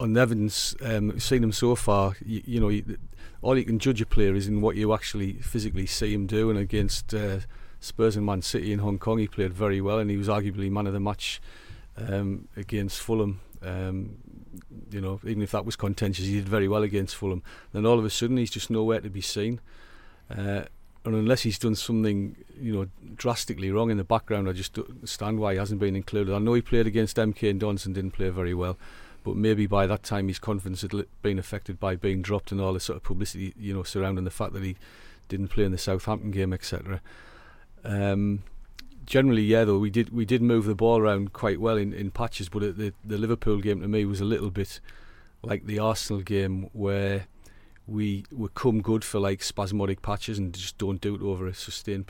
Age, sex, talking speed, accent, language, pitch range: 40-59, male, 225 wpm, British, English, 100-110 Hz